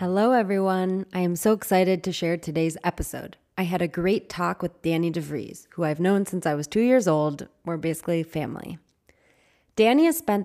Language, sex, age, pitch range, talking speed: English, female, 20-39, 165-195 Hz, 190 wpm